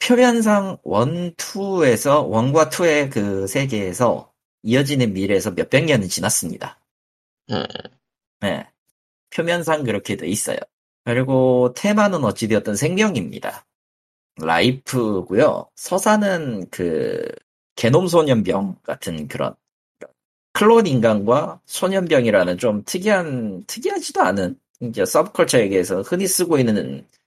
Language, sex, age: Korean, male, 40-59